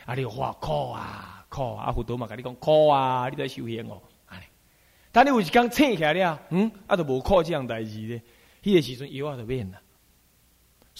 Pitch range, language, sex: 125-190 Hz, Chinese, male